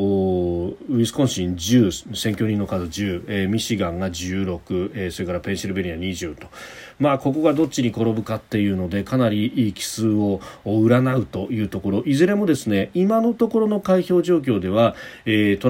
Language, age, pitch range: Japanese, 40-59, 95-140 Hz